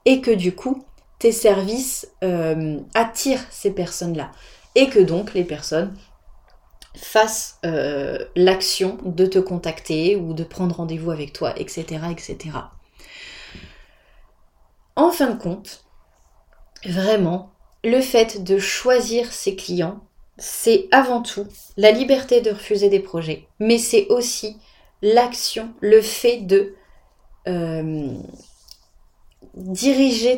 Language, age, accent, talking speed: French, 30-49, French, 115 wpm